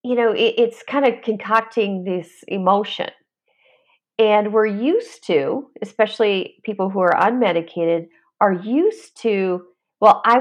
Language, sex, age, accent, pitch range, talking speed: English, female, 40-59, American, 200-285 Hz, 125 wpm